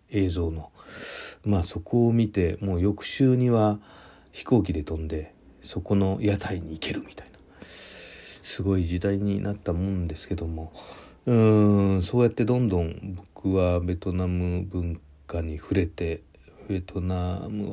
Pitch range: 90-105 Hz